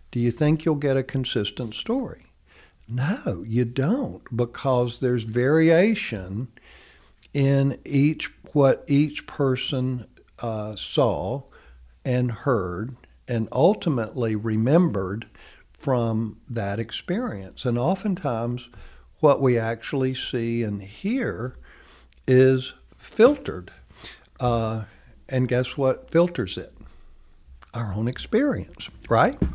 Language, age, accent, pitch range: English, 60-79, American, 105-130 Hz